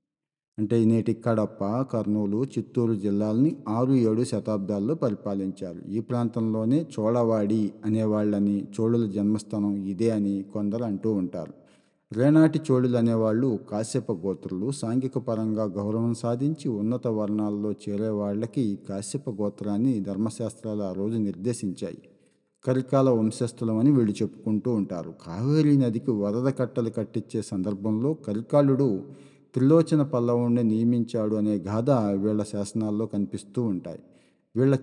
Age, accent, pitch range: 50-69, native, 105-130 Hz